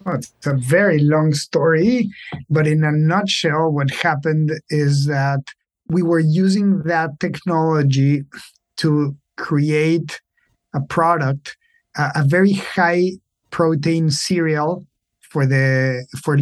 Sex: male